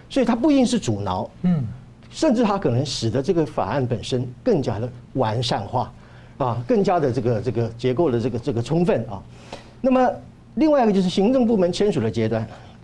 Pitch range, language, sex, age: 120-195 Hz, Chinese, male, 50-69